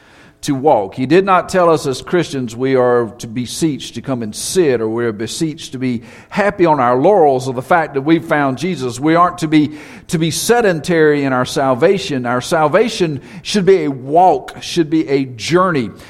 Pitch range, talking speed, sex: 125-165 Hz, 200 wpm, male